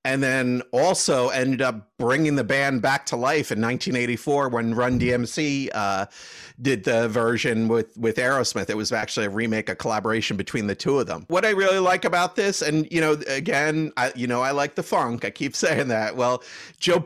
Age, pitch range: 40-59, 115-140 Hz